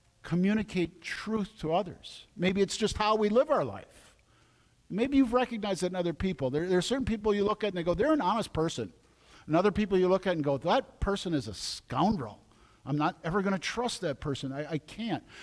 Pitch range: 155-210 Hz